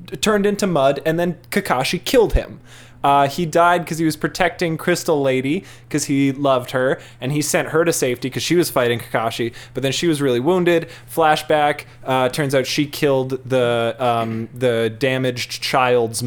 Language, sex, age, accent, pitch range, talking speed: English, male, 20-39, American, 125-155 Hz, 180 wpm